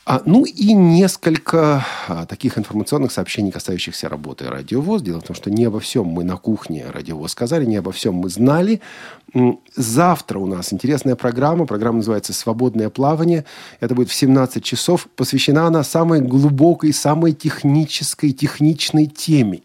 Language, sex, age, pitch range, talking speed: Russian, male, 40-59, 105-150 Hz, 150 wpm